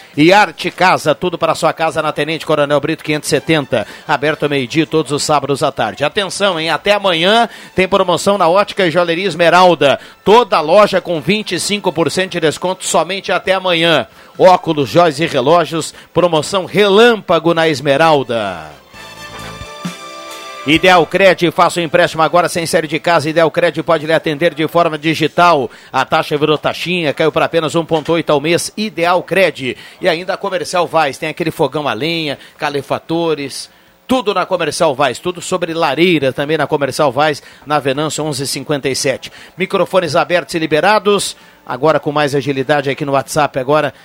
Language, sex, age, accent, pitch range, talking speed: Portuguese, male, 50-69, Brazilian, 145-175 Hz, 155 wpm